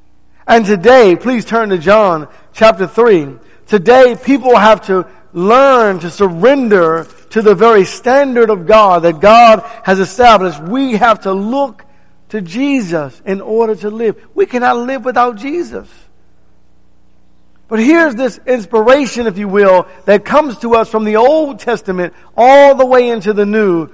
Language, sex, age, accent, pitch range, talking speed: English, male, 50-69, American, 170-230 Hz, 155 wpm